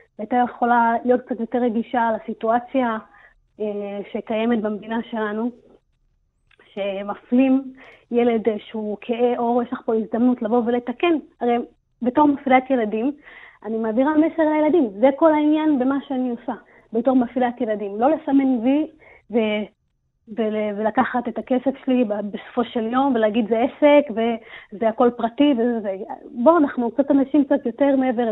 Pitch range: 225-275 Hz